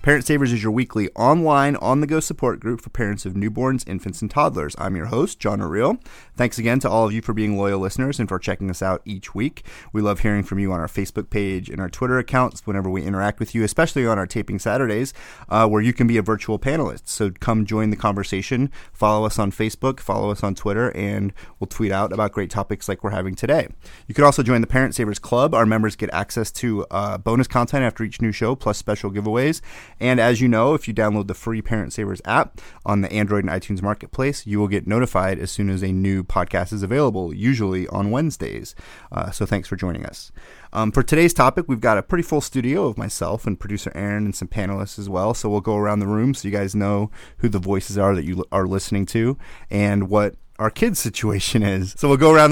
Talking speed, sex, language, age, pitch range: 235 wpm, male, English, 30-49, 100-125 Hz